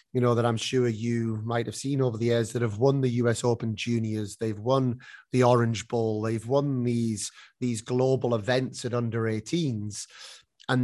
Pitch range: 120-140 Hz